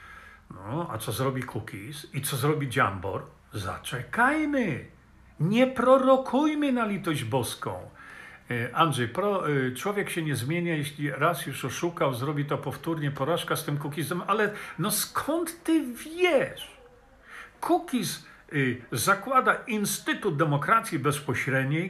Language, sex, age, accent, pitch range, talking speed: Polish, male, 50-69, native, 140-210 Hz, 115 wpm